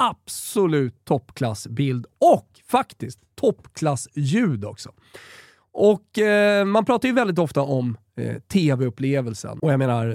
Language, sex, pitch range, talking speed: Swedish, male, 120-155 Hz, 100 wpm